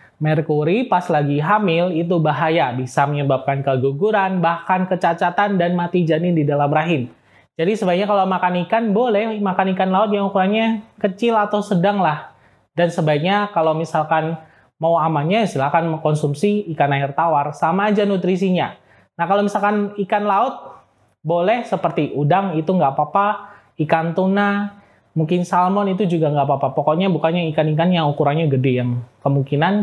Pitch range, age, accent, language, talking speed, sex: 150-200 Hz, 20-39, native, Indonesian, 145 wpm, male